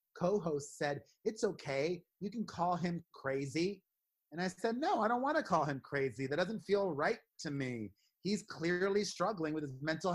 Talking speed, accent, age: 190 wpm, American, 30-49